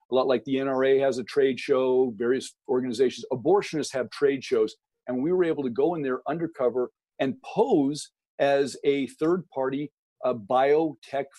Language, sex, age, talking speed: English, male, 40-59, 170 wpm